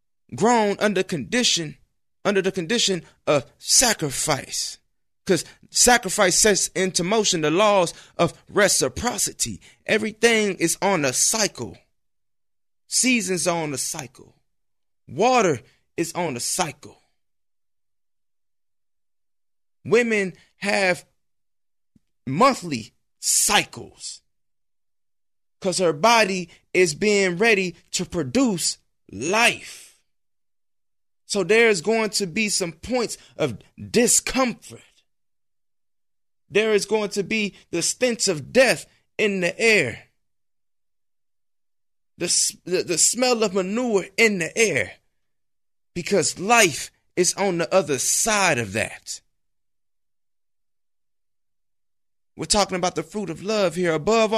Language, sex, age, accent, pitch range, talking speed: English, male, 20-39, American, 165-215 Hz, 105 wpm